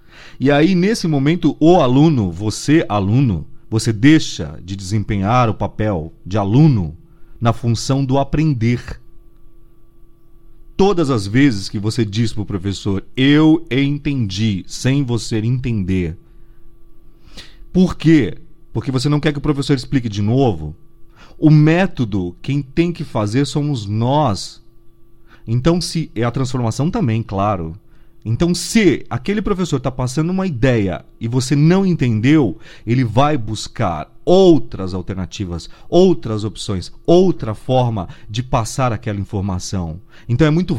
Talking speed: 130 wpm